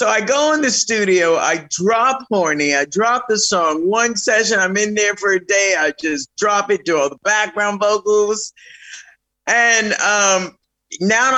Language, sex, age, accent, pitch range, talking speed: English, male, 50-69, American, 180-245 Hz, 175 wpm